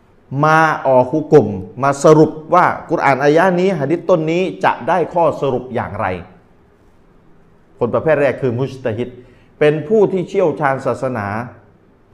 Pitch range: 120-170 Hz